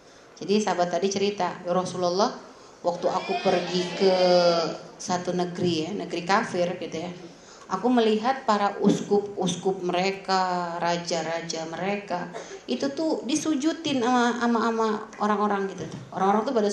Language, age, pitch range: Indonesian, 30-49, 180-235 Hz